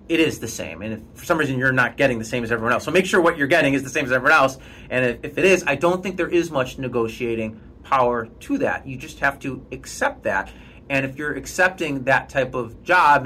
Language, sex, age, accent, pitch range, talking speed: English, male, 30-49, American, 130-175 Hz, 260 wpm